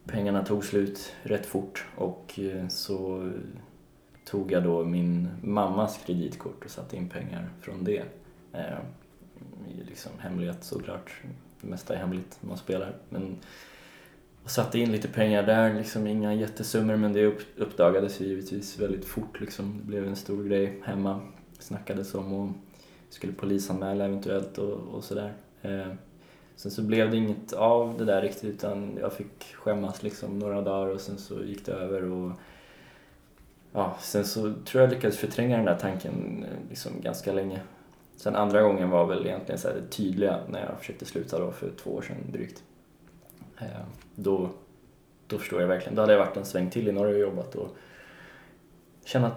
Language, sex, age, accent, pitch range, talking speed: Swedish, male, 20-39, native, 95-105 Hz, 165 wpm